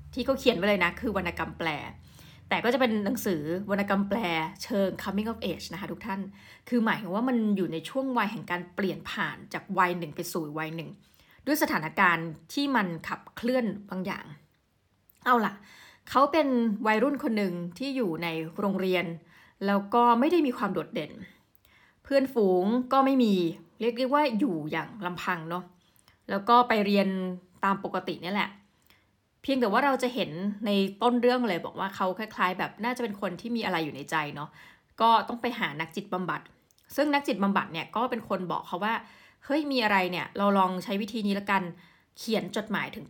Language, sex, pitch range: Thai, female, 180-240 Hz